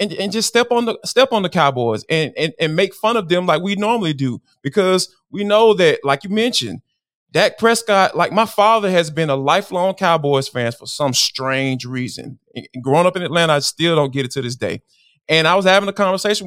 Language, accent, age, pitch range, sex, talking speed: English, American, 20-39, 150-220 Hz, male, 225 wpm